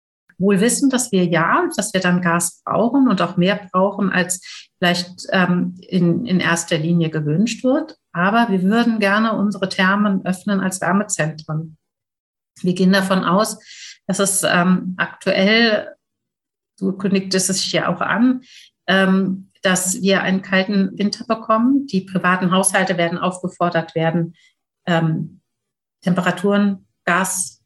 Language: German